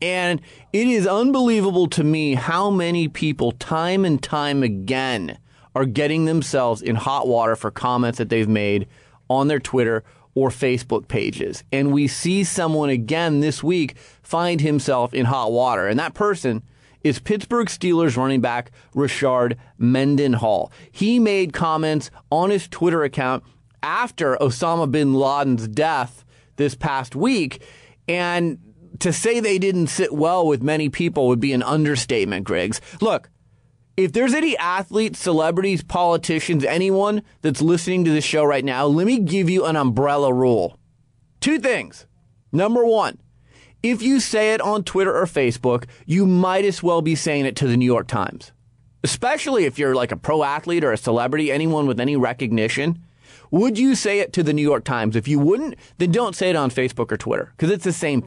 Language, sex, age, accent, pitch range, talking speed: English, male, 30-49, American, 125-175 Hz, 170 wpm